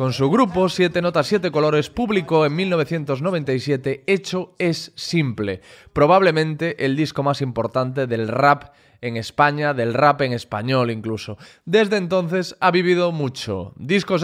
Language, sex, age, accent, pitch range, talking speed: Spanish, male, 20-39, Spanish, 125-165 Hz, 140 wpm